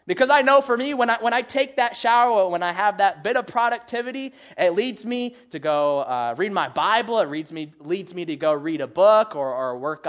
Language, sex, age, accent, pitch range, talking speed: English, male, 20-39, American, 150-220 Hz, 245 wpm